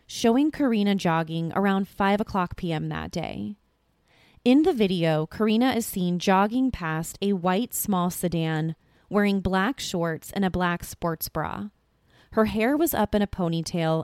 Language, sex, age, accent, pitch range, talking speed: English, female, 20-39, American, 170-220 Hz, 155 wpm